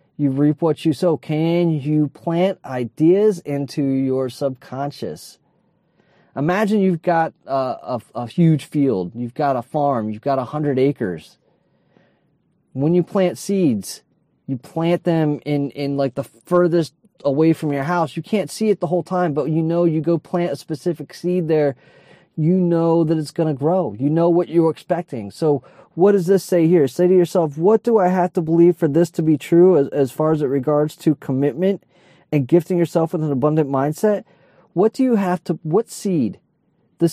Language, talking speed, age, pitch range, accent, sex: English, 190 wpm, 30-49, 150-180 Hz, American, male